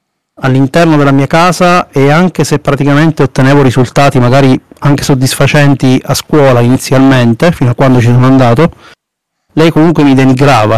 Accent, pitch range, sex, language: native, 130-155 Hz, male, Italian